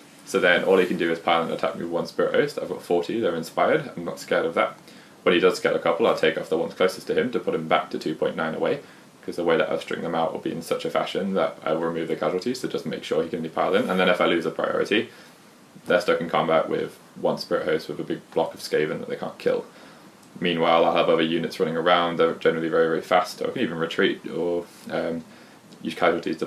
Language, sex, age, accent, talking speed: English, male, 20-39, British, 275 wpm